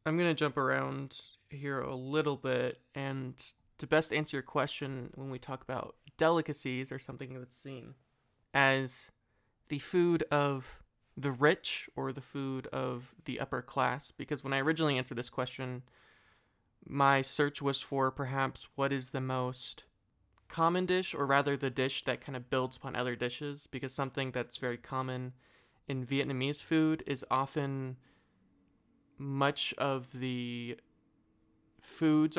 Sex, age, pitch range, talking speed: male, 20-39, 125-145 Hz, 150 wpm